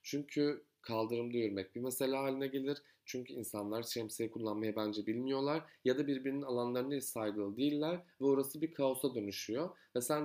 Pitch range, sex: 115-145 Hz, male